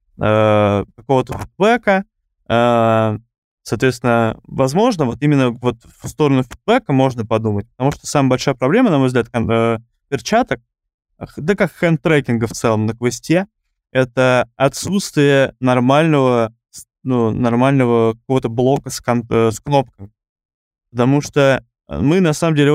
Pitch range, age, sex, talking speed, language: 120-145 Hz, 20-39, male, 120 wpm, Russian